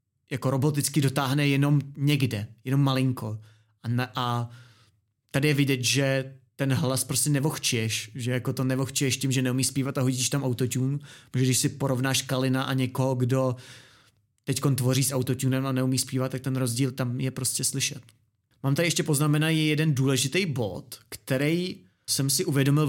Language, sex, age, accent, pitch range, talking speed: Czech, male, 30-49, native, 125-150 Hz, 165 wpm